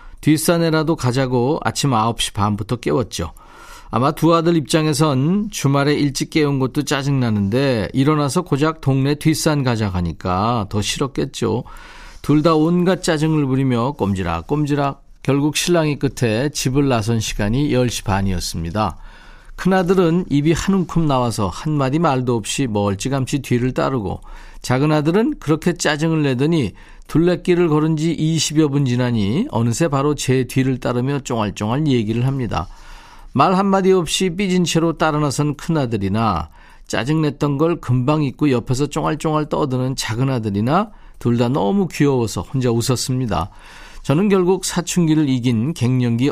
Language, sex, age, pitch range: Korean, male, 40-59, 120-160 Hz